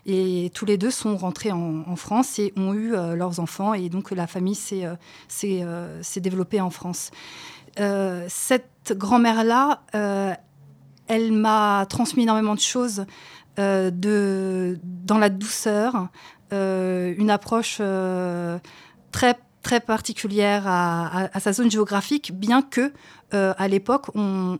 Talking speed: 145 wpm